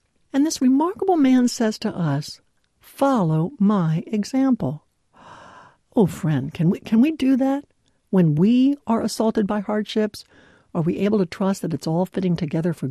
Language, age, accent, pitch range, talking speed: English, 60-79, American, 160-230 Hz, 165 wpm